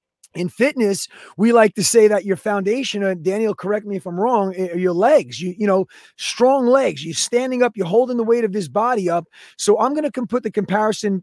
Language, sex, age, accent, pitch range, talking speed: English, male, 30-49, American, 180-225 Hz, 230 wpm